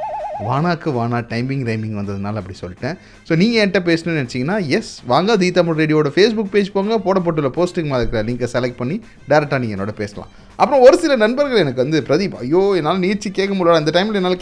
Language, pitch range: Tamil, 140-220 Hz